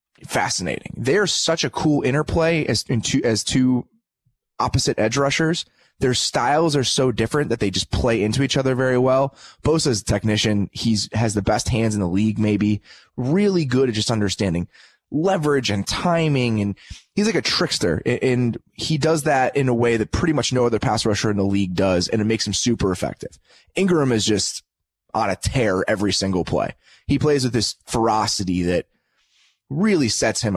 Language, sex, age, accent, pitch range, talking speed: English, male, 20-39, American, 105-135 Hz, 190 wpm